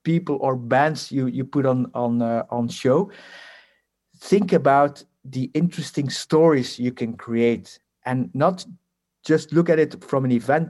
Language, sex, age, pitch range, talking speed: English, male, 50-69, 120-160 Hz, 155 wpm